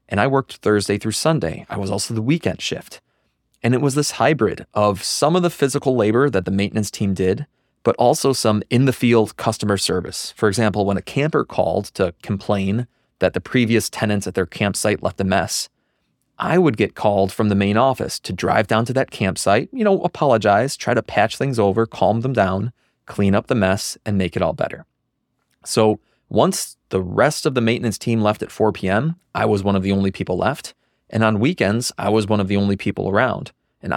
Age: 30-49